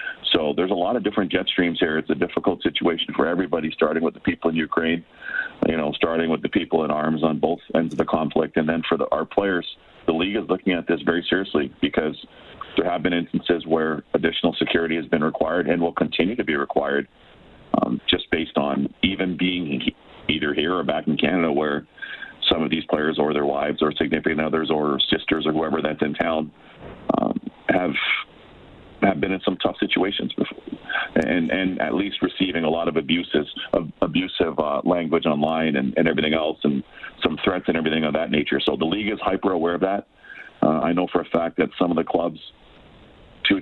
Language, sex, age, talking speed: English, male, 40-59, 210 wpm